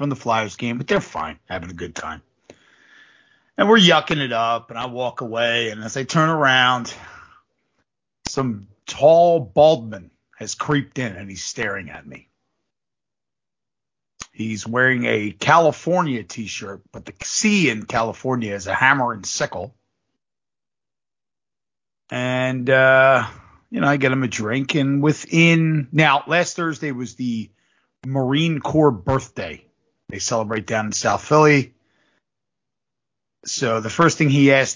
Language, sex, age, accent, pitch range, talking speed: English, male, 50-69, American, 115-145 Hz, 140 wpm